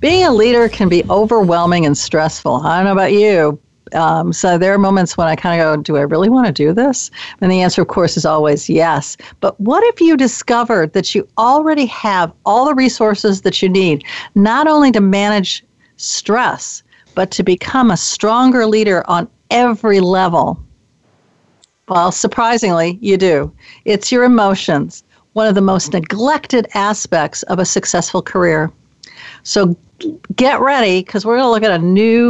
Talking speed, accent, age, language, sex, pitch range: 175 wpm, American, 50-69, English, female, 170-215 Hz